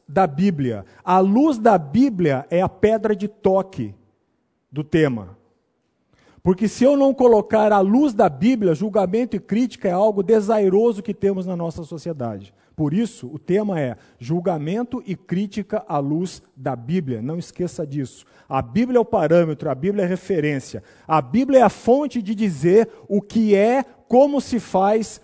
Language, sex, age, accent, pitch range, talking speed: Portuguese, male, 50-69, Brazilian, 150-215 Hz, 165 wpm